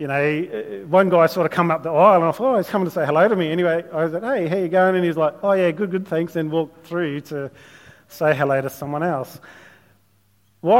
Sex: male